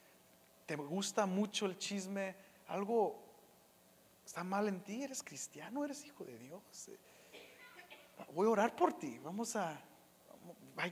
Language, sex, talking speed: English, male, 130 wpm